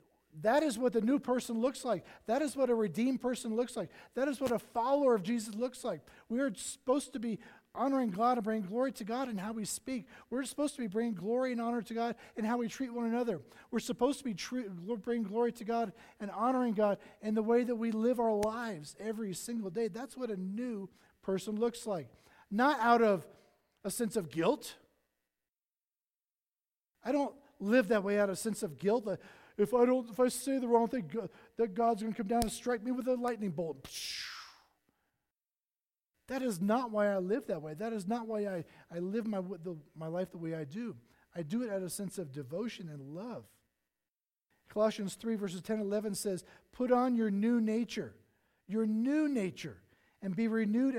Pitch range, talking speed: 195-240 Hz, 210 wpm